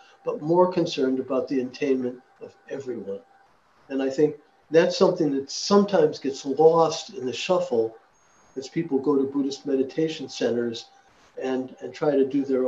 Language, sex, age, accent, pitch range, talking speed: English, male, 60-79, American, 135-170 Hz, 155 wpm